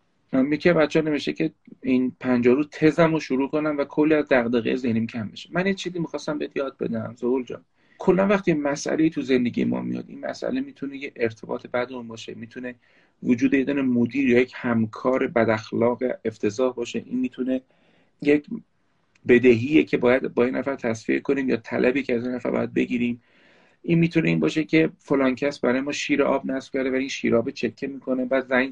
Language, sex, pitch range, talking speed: Persian, male, 120-155 Hz, 185 wpm